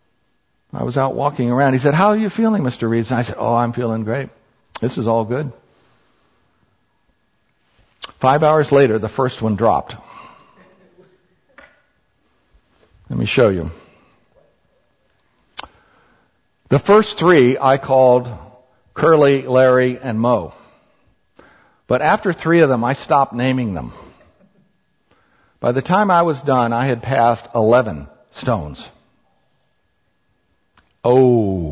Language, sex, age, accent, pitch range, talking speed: English, male, 60-79, American, 120-160 Hz, 125 wpm